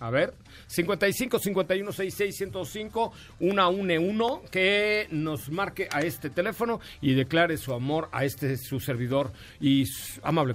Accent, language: Mexican, Spanish